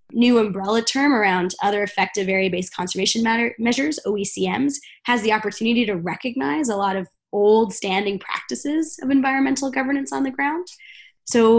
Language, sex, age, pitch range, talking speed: English, female, 20-39, 190-230 Hz, 145 wpm